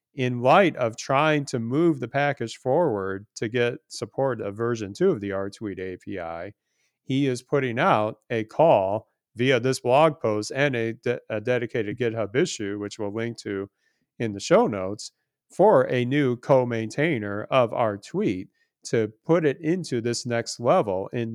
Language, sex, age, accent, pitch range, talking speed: English, male, 40-59, American, 110-140 Hz, 160 wpm